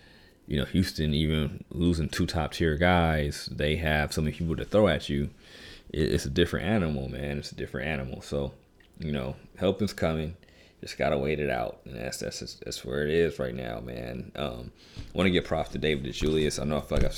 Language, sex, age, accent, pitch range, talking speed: English, male, 30-49, American, 75-90 Hz, 225 wpm